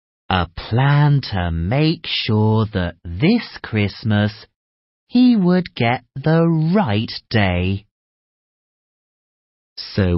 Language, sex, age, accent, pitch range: Chinese, male, 30-49, British, 100-160 Hz